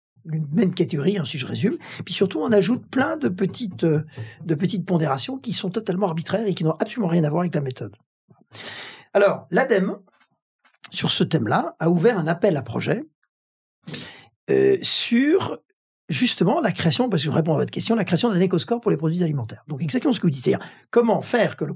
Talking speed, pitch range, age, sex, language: 205 wpm, 155-215 Hz, 50-69, male, French